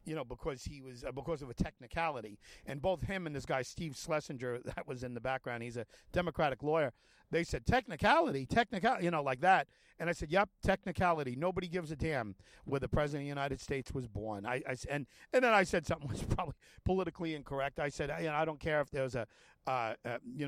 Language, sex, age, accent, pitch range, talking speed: English, male, 50-69, American, 130-175 Hz, 235 wpm